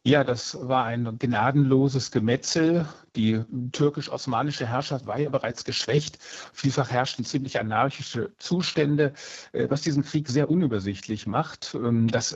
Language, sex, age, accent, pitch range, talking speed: German, male, 60-79, German, 120-145 Hz, 120 wpm